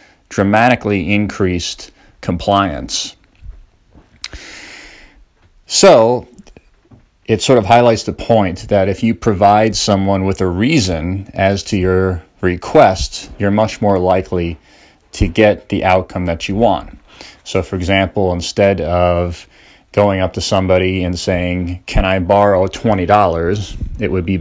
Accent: American